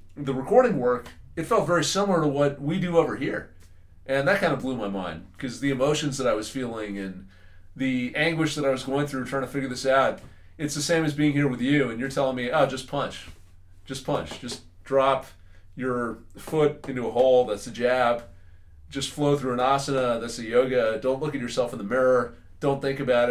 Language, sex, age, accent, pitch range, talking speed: English, male, 30-49, American, 100-140 Hz, 220 wpm